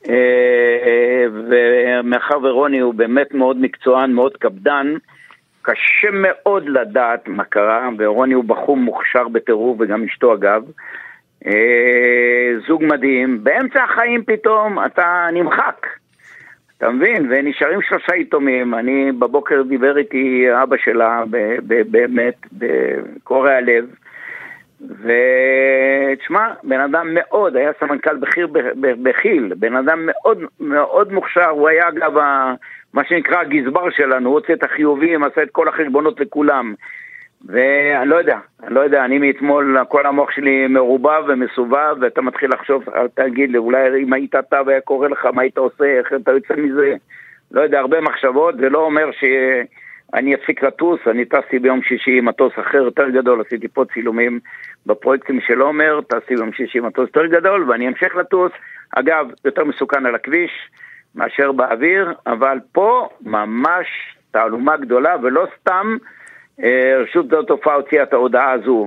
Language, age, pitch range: Hebrew, 60-79, 125-170 Hz